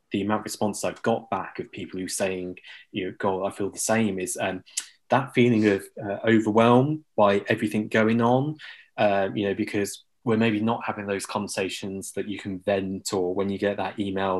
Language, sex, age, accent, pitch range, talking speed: English, male, 20-39, British, 95-110 Hz, 210 wpm